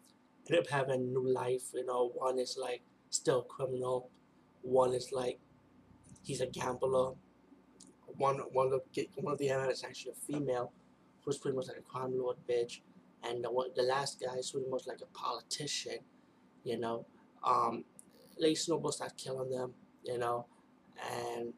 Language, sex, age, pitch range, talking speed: English, male, 20-39, 125-135 Hz, 170 wpm